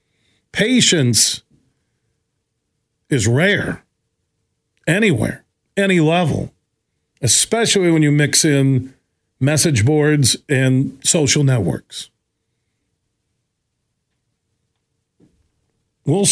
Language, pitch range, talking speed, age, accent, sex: English, 120-165 Hz, 65 wpm, 50-69, American, male